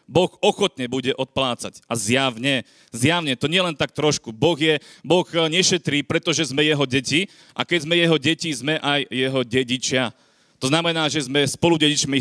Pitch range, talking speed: 135-165 Hz, 165 wpm